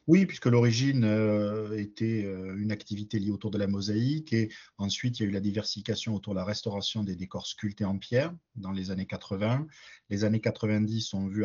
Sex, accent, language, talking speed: male, French, French, 205 wpm